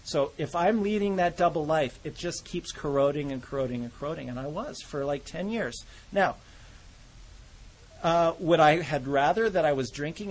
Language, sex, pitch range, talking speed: English, male, 140-175 Hz, 185 wpm